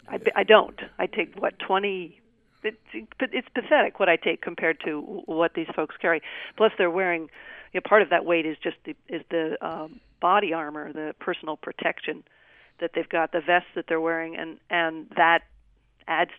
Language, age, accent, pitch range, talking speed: English, 50-69, American, 165-190 Hz, 185 wpm